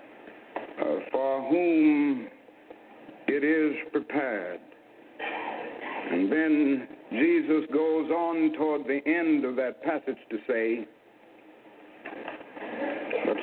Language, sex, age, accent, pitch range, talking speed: English, male, 60-79, American, 140-185 Hz, 90 wpm